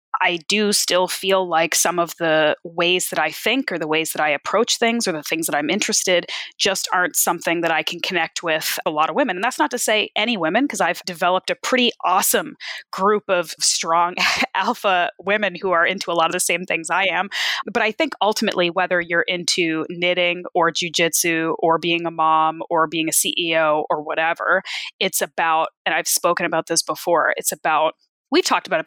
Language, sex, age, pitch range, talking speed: English, female, 20-39, 165-205 Hz, 210 wpm